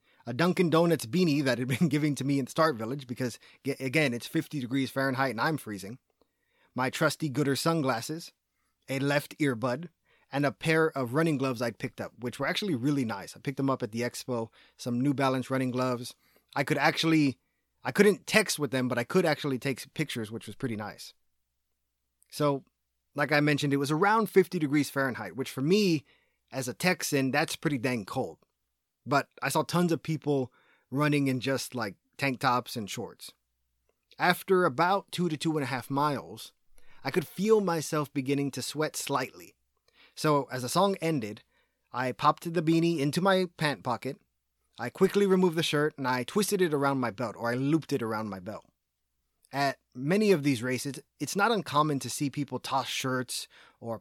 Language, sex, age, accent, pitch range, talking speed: English, male, 30-49, American, 125-155 Hz, 190 wpm